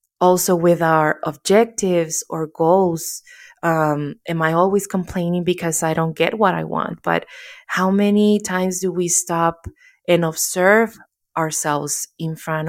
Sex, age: female, 20-39